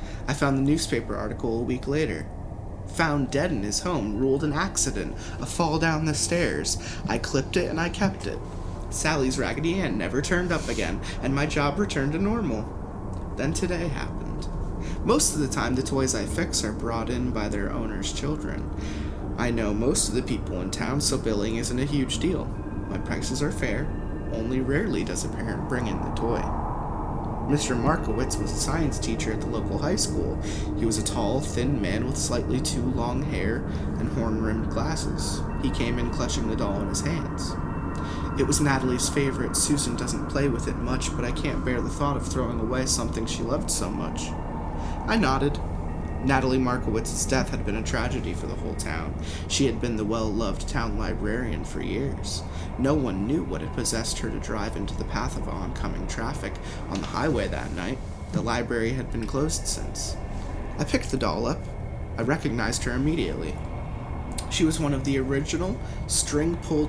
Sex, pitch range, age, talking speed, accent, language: male, 85-135 Hz, 20-39, 185 wpm, American, English